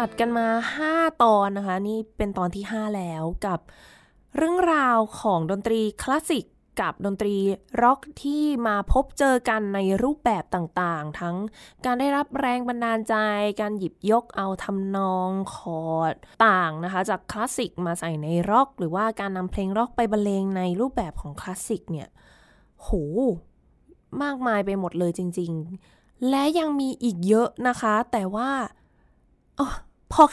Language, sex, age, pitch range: Thai, female, 20-39, 185-245 Hz